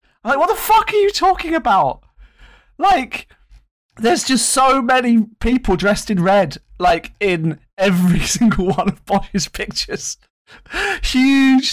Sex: male